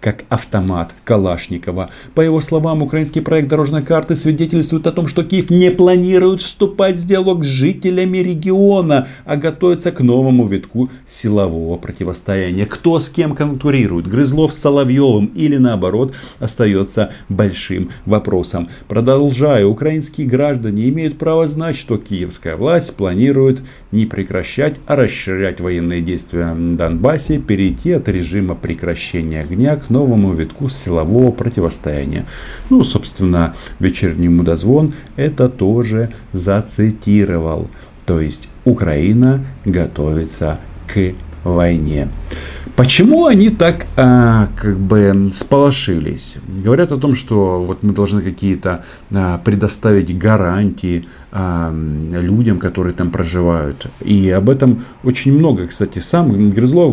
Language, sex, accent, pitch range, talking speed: Russian, male, native, 90-140 Hz, 115 wpm